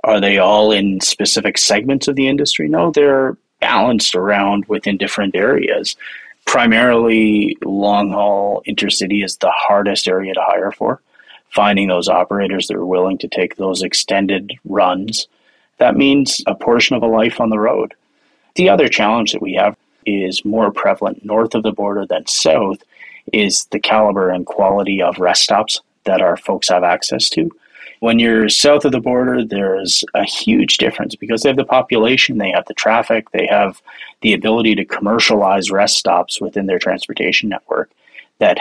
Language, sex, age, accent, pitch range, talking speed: English, male, 30-49, American, 95-120 Hz, 170 wpm